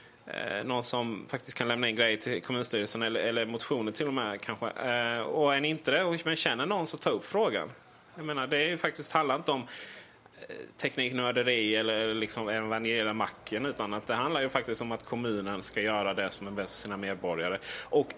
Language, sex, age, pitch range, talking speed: Swedish, male, 20-39, 115-145 Hz, 210 wpm